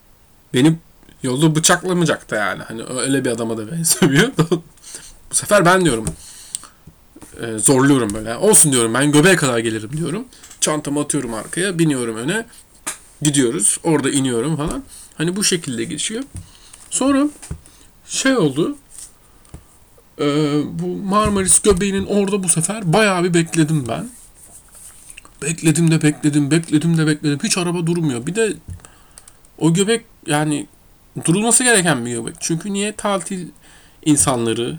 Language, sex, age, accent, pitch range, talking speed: Turkish, male, 40-59, native, 135-180 Hz, 120 wpm